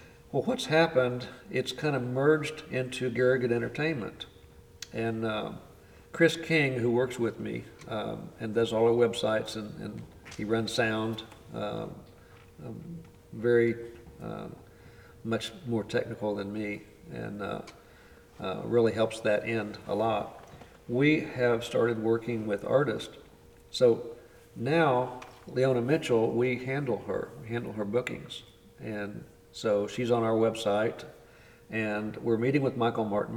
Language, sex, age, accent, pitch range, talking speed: English, male, 50-69, American, 110-125 Hz, 135 wpm